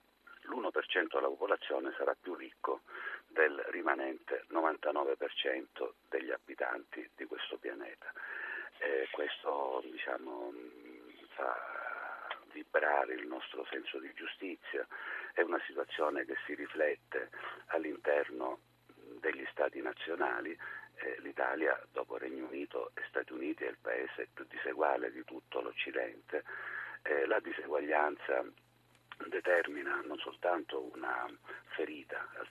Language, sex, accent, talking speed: Italian, male, native, 105 wpm